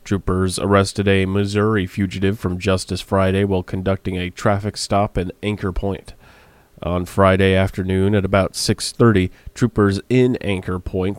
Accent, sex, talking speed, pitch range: American, male, 140 wpm, 90-100 Hz